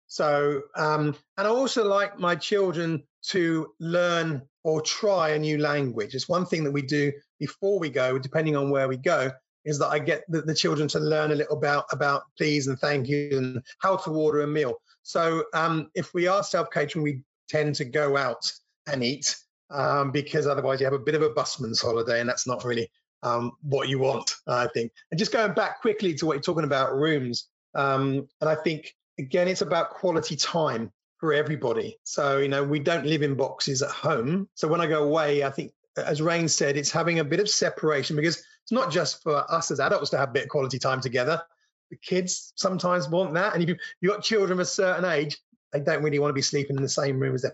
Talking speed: 225 wpm